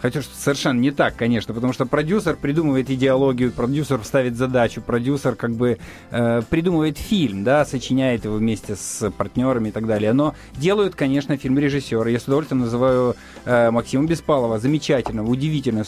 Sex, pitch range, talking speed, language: male, 115-155 Hz, 150 wpm, Russian